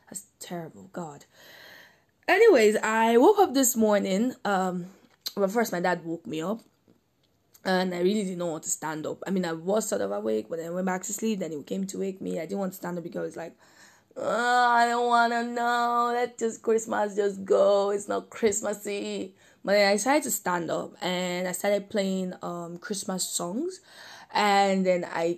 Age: 10-29